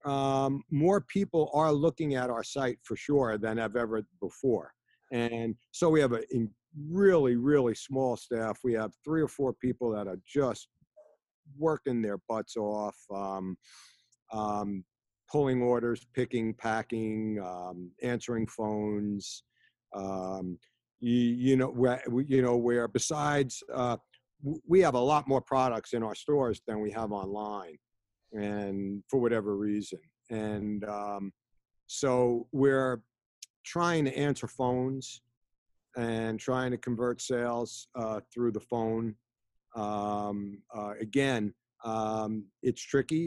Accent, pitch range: American, 110-130 Hz